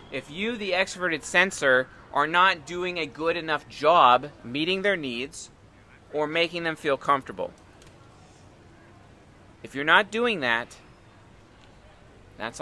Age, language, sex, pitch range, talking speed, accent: 30-49, English, male, 110-170 Hz, 125 wpm, American